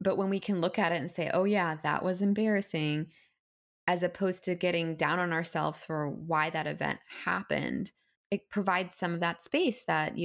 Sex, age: female, 20-39